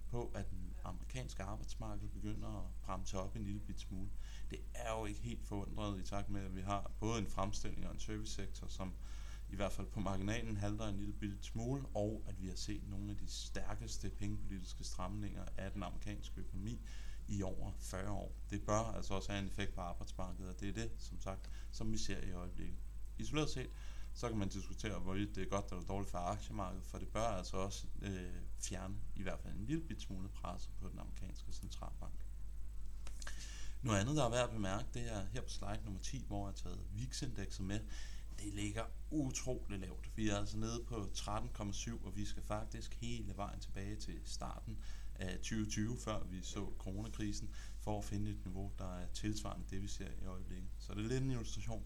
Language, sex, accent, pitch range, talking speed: Danish, male, native, 95-105 Hz, 205 wpm